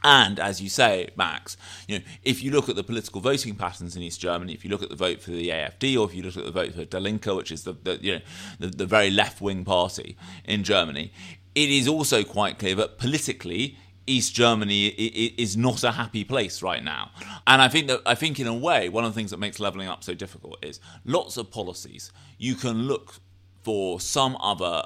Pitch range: 95-125 Hz